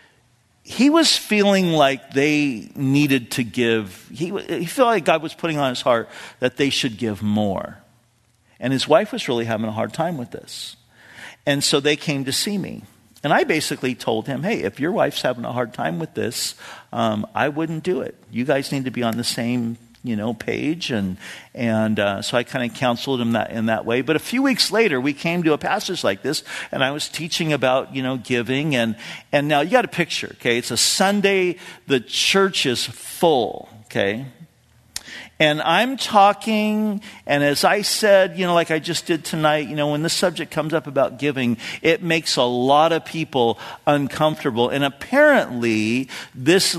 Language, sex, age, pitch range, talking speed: English, male, 50-69, 120-170 Hz, 195 wpm